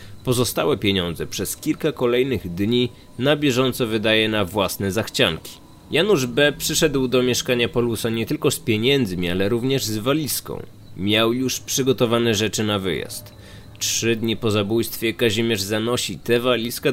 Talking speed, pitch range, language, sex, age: 140 wpm, 100-130 Hz, Polish, male, 20-39